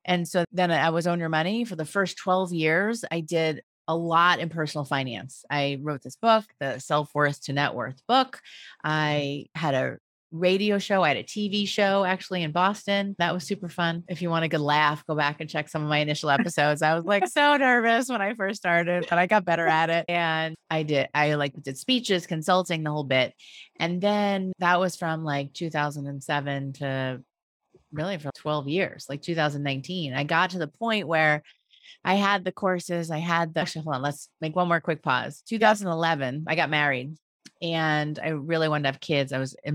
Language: English